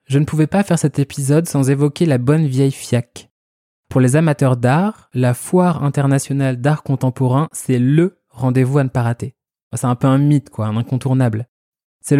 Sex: male